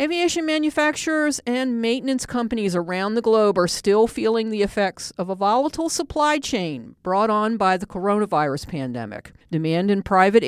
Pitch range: 180-255 Hz